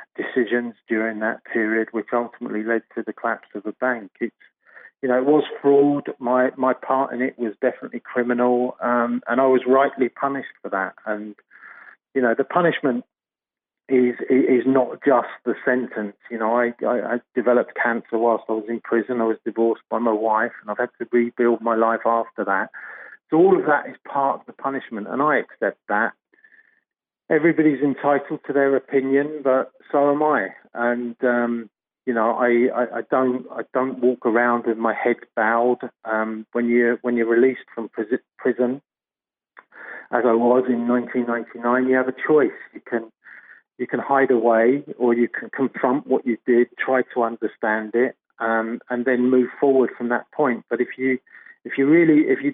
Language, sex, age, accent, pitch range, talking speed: English, male, 40-59, British, 115-130 Hz, 185 wpm